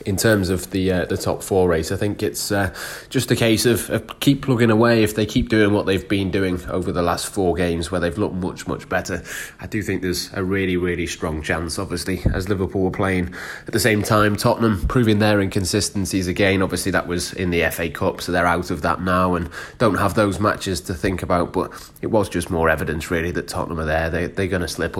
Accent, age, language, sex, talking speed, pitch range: British, 20-39, English, male, 240 wpm, 90-105 Hz